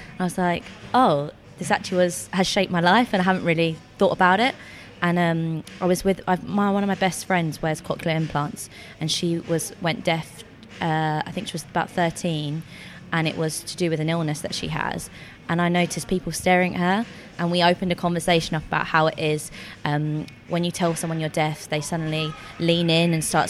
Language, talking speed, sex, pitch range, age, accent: English, 220 wpm, female, 155-180 Hz, 20-39, British